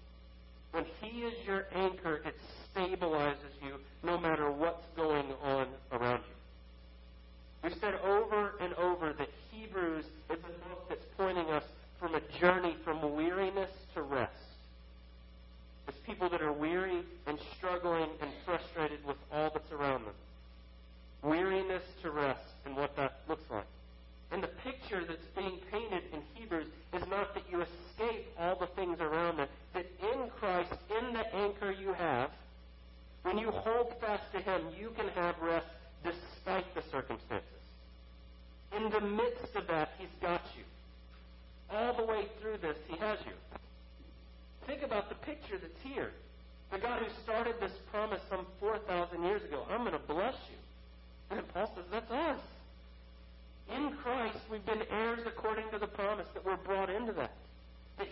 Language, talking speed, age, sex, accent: English, 155 wpm, 40-59, male, American